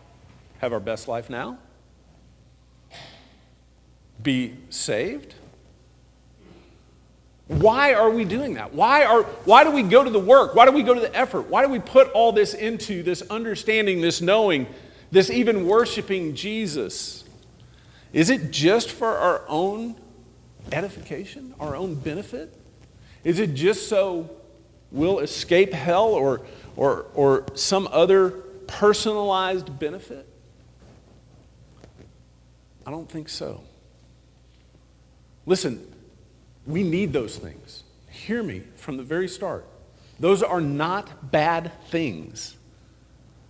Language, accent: English, American